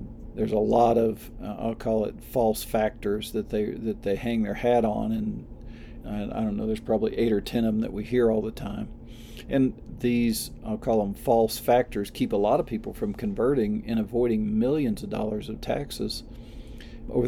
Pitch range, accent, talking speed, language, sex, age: 110-120 Hz, American, 200 wpm, English, male, 50-69